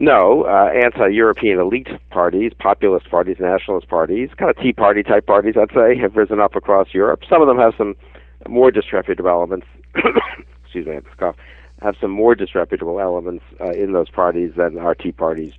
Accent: American